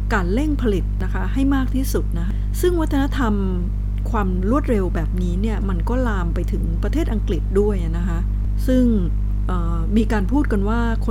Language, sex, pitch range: Thai, female, 95-105 Hz